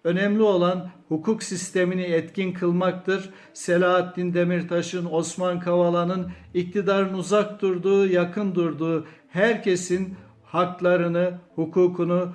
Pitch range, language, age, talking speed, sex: 155-180 Hz, Turkish, 60-79, 85 wpm, male